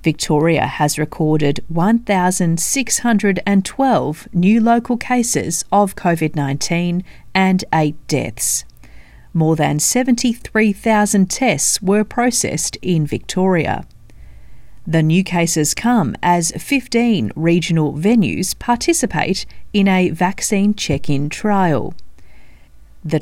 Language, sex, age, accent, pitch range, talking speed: English, female, 40-59, Australian, 150-210 Hz, 90 wpm